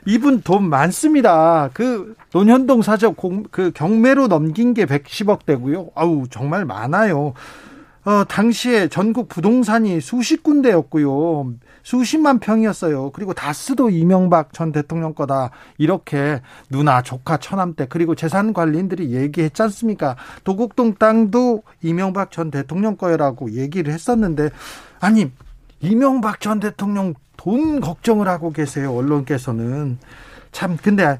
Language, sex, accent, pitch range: Korean, male, native, 145-215 Hz